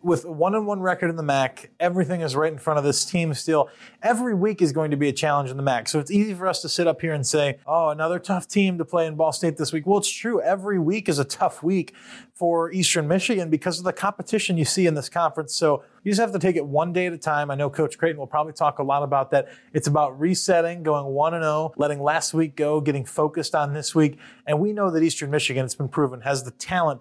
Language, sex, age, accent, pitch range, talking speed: English, male, 30-49, American, 140-165 Hz, 270 wpm